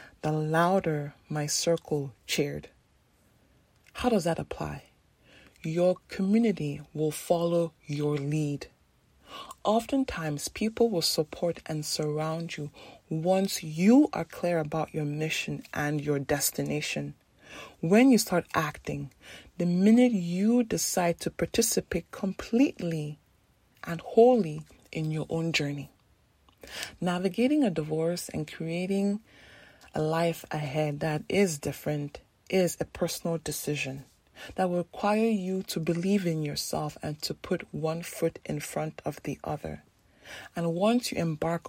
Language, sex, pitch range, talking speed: English, female, 150-190 Hz, 125 wpm